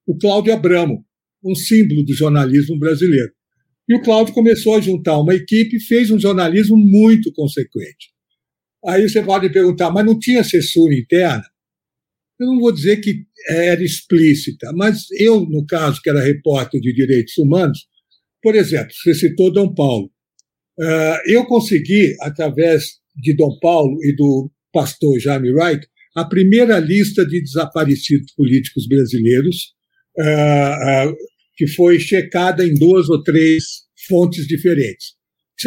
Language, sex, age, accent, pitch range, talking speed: Portuguese, male, 60-79, Brazilian, 150-205 Hz, 140 wpm